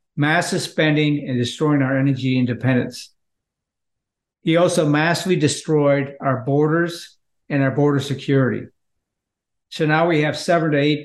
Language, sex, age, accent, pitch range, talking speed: English, male, 50-69, American, 140-170 Hz, 130 wpm